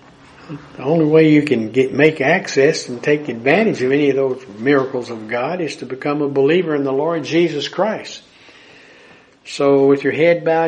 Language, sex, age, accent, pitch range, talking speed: English, male, 60-79, American, 130-150 Hz, 185 wpm